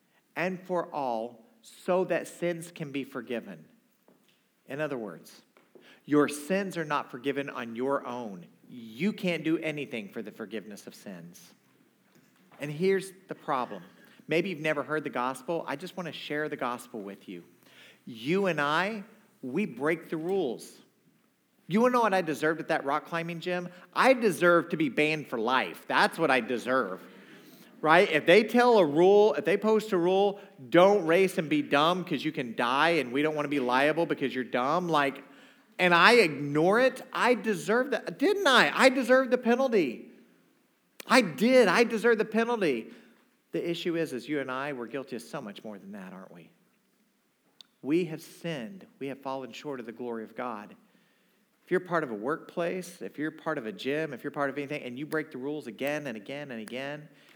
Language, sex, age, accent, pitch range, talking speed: English, male, 50-69, American, 140-190 Hz, 190 wpm